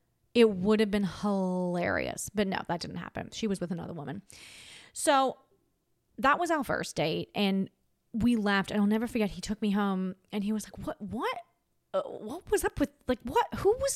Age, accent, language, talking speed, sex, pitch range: 20-39, American, English, 195 wpm, female, 185-235 Hz